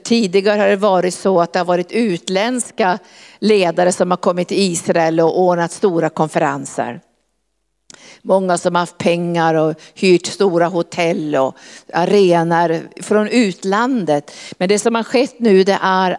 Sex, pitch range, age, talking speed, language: female, 170-195 Hz, 50-69, 150 wpm, Swedish